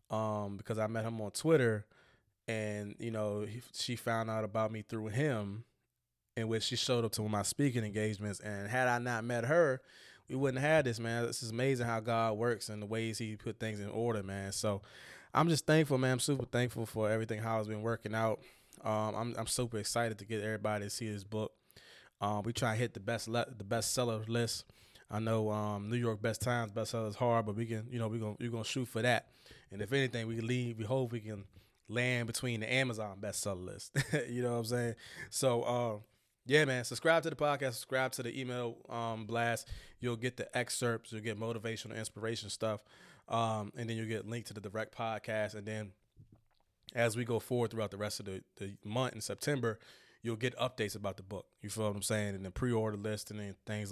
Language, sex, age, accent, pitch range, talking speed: English, male, 20-39, American, 105-120 Hz, 225 wpm